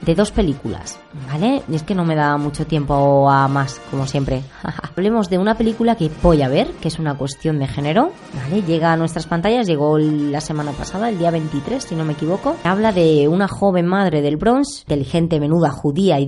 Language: Spanish